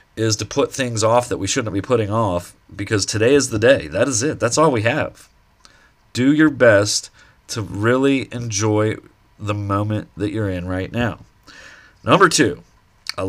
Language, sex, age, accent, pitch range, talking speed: English, male, 30-49, American, 100-125 Hz, 175 wpm